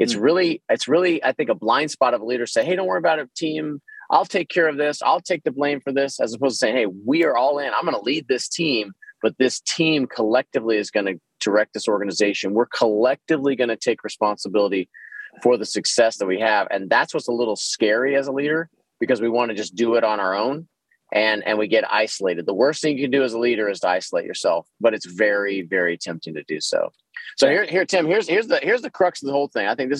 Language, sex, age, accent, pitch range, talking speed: English, male, 30-49, American, 110-160 Hz, 260 wpm